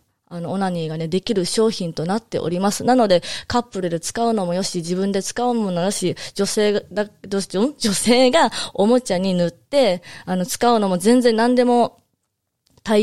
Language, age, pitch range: Japanese, 20-39, 175-210 Hz